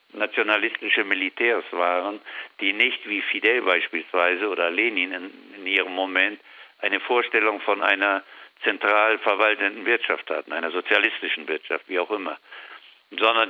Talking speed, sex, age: 125 wpm, male, 60-79